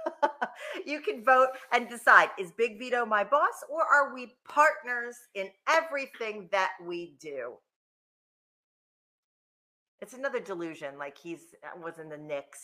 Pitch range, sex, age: 175-285 Hz, female, 40-59